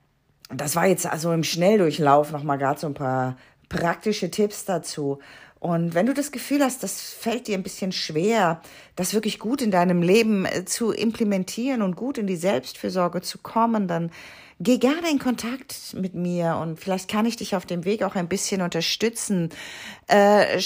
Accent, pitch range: German, 165-215 Hz